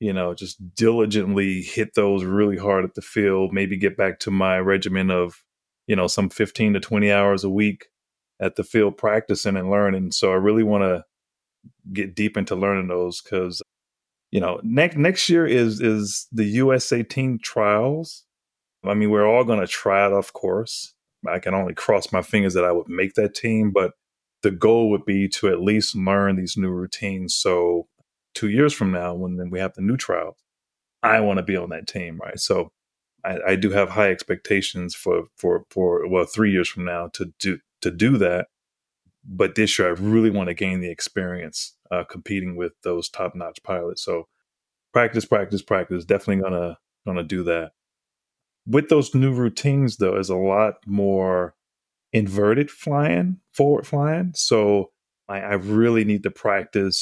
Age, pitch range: 30-49, 95-110 Hz